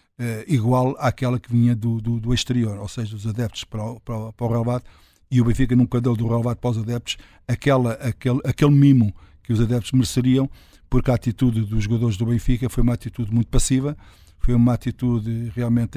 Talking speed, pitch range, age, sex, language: 210 wpm, 115-125 Hz, 50-69, male, Portuguese